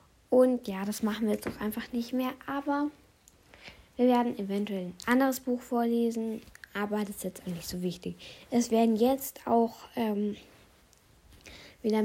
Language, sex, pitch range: German, female, 205-250 Hz